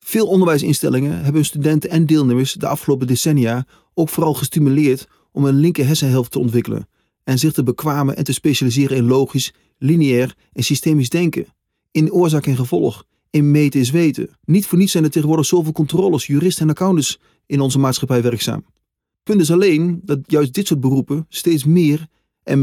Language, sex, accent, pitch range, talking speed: Dutch, male, Dutch, 130-160 Hz, 175 wpm